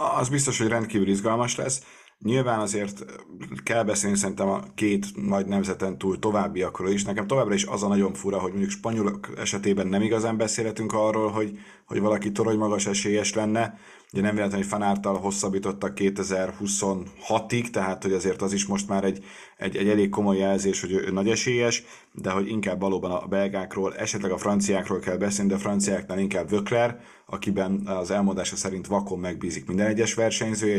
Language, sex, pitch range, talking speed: Hungarian, male, 95-110 Hz, 170 wpm